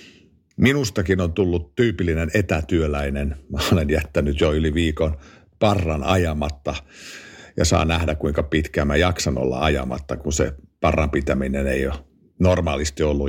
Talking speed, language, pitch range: 135 wpm, Finnish, 75-90 Hz